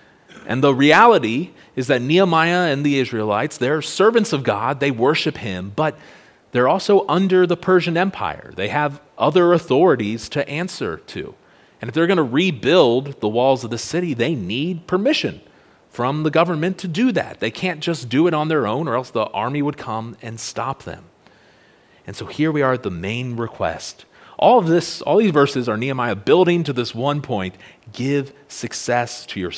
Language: English